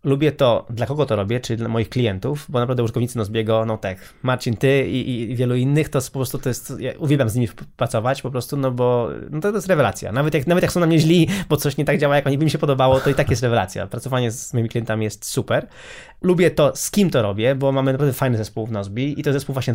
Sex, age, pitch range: male, 20-39, 120-145 Hz